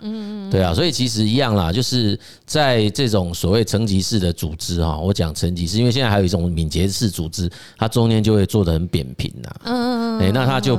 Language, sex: Chinese, male